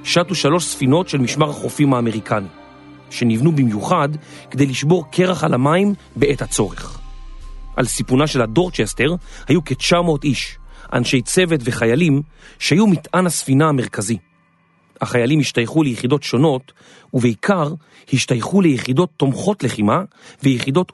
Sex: male